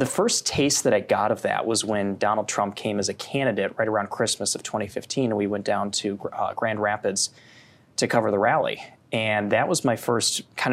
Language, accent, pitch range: English, American, 105-125 Hz